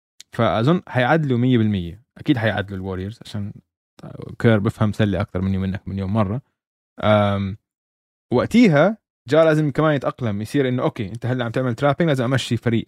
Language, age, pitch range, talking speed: Arabic, 20-39, 105-145 Hz, 155 wpm